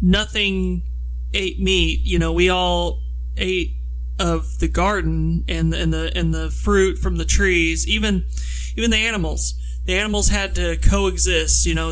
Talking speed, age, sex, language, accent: 155 wpm, 30-49, male, English, American